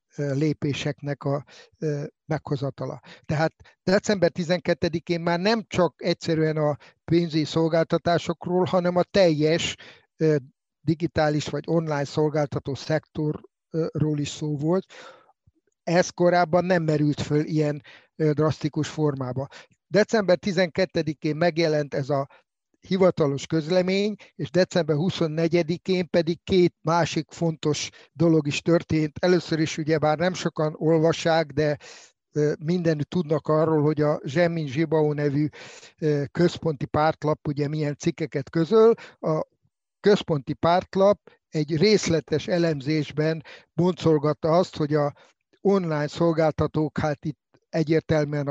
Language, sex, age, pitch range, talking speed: Hungarian, male, 50-69, 150-175 Hz, 105 wpm